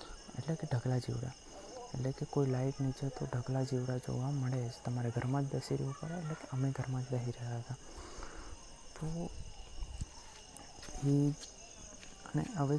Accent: native